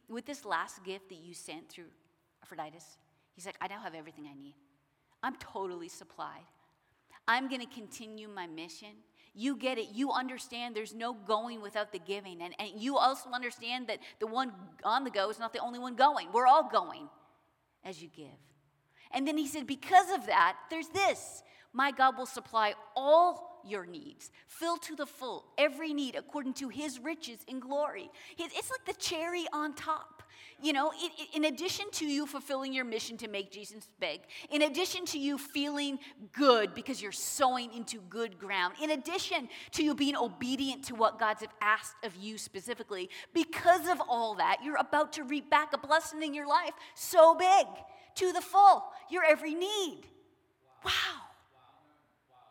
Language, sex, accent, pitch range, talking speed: English, female, American, 215-310 Hz, 180 wpm